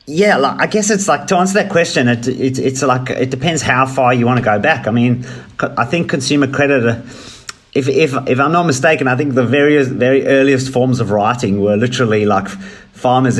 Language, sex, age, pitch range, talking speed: English, male, 30-49, 110-130 Hz, 215 wpm